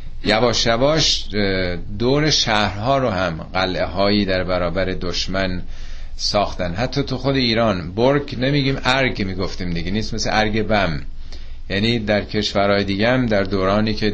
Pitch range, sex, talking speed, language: 90-115 Hz, male, 135 wpm, Persian